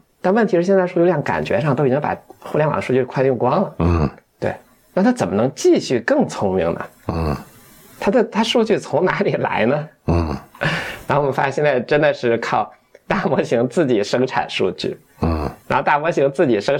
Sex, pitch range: male, 125-185 Hz